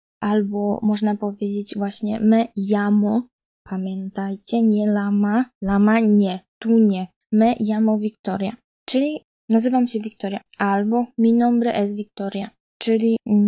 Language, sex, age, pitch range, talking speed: Polish, female, 20-39, 210-240 Hz, 115 wpm